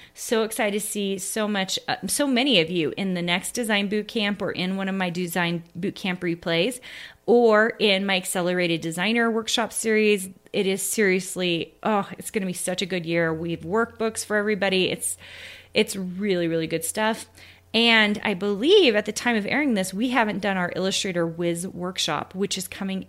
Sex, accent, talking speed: female, American, 185 wpm